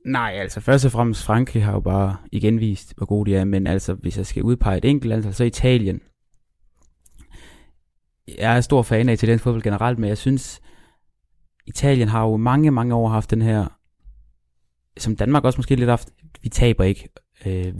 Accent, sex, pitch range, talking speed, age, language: native, male, 100-120 Hz, 190 wpm, 20-39, Danish